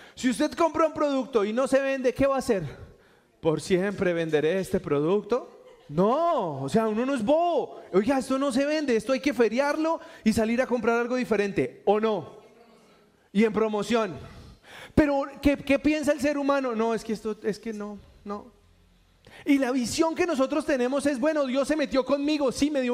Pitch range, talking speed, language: 220-285 Hz, 195 wpm, Spanish